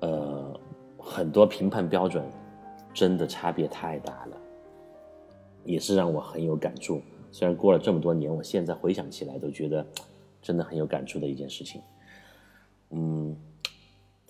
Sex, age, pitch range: male, 30-49, 80-100 Hz